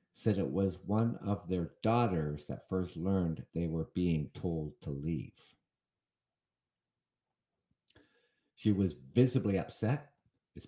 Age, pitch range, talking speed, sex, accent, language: 50-69, 80-105 Hz, 120 wpm, male, American, English